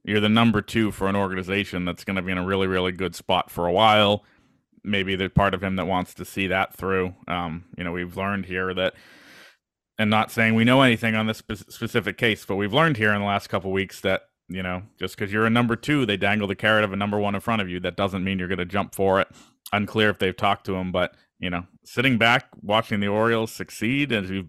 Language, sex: English, male